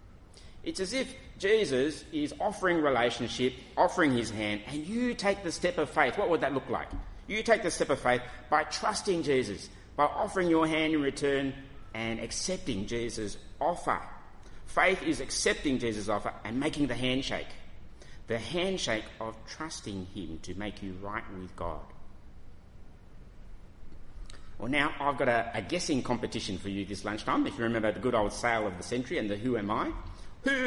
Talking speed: 175 wpm